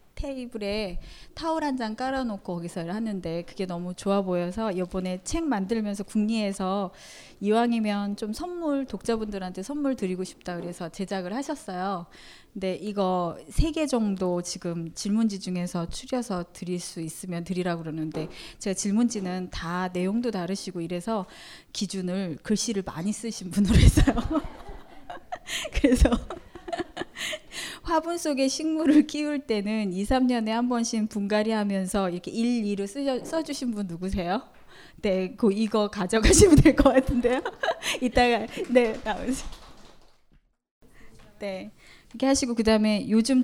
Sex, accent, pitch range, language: female, native, 185-250 Hz, Korean